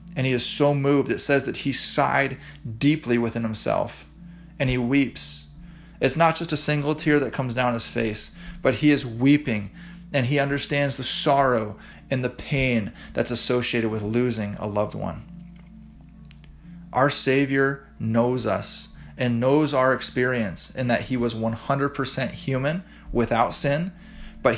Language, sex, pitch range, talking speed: English, male, 120-155 Hz, 155 wpm